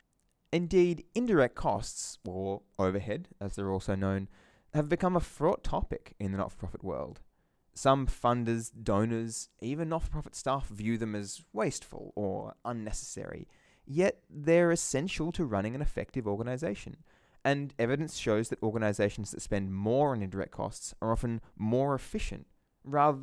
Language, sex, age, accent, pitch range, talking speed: English, male, 20-39, Australian, 100-155 Hz, 140 wpm